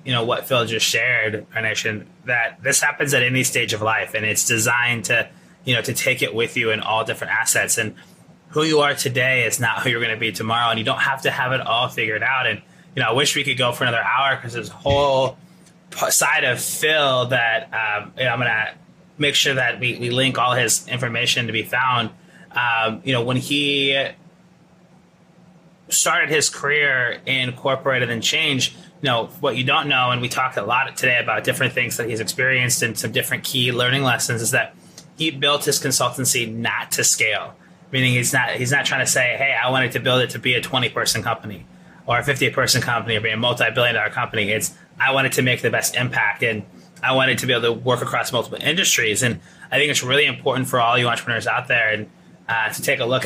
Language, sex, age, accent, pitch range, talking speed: English, male, 20-39, American, 120-145 Hz, 230 wpm